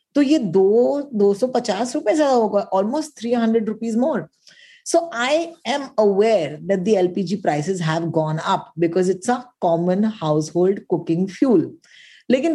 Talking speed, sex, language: 120 wpm, female, Hindi